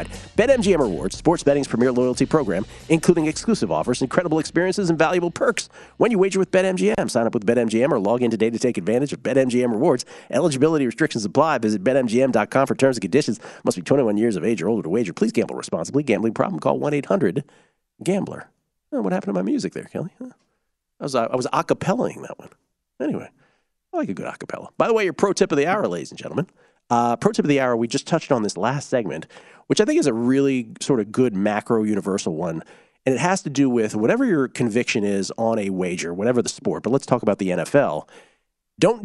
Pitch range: 115-155 Hz